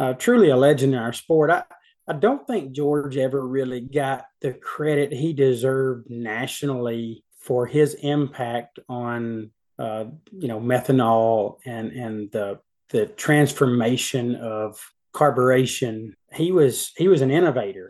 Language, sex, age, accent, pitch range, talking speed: English, male, 30-49, American, 115-135 Hz, 135 wpm